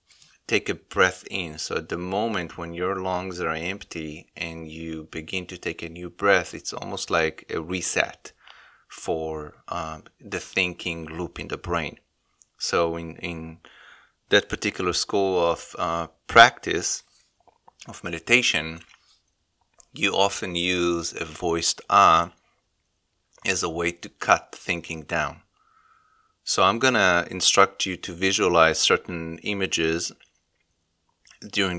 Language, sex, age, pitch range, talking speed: English, male, 30-49, 80-95 Hz, 130 wpm